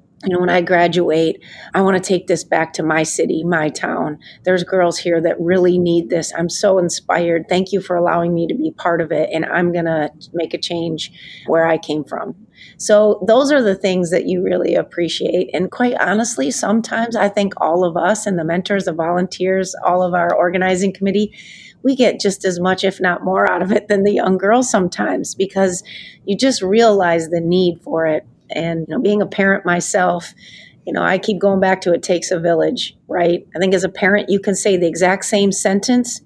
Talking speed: 215 wpm